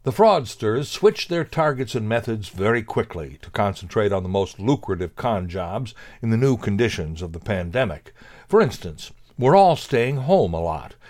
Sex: male